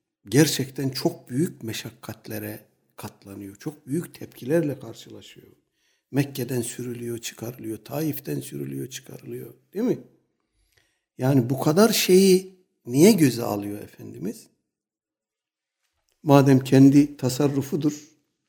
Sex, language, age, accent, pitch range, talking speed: male, Turkish, 60-79, native, 110-150 Hz, 90 wpm